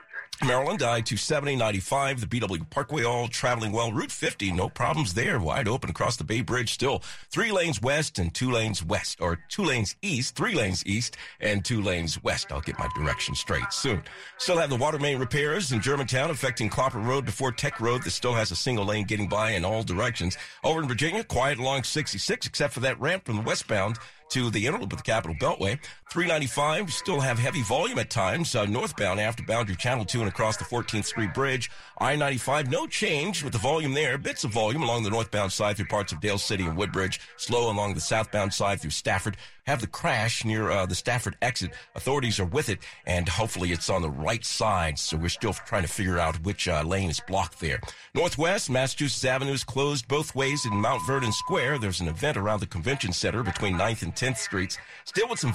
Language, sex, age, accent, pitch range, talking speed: English, male, 50-69, American, 105-135 Hz, 215 wpm